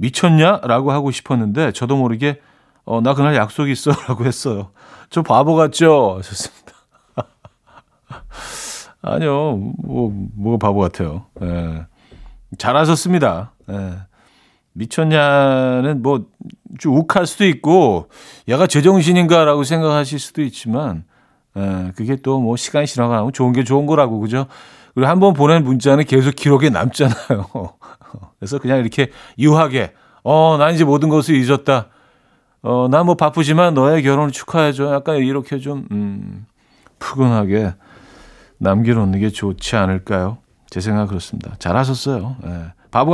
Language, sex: Korean, male